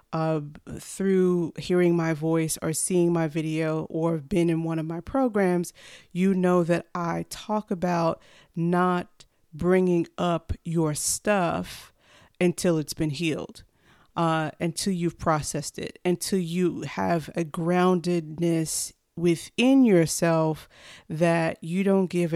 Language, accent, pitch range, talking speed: English, American, 165-185 Hz, 125 wpm